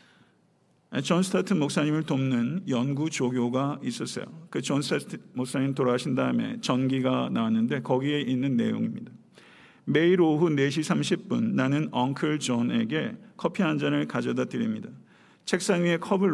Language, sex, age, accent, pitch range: Korean, male, 50-69, native, 130-185 Hz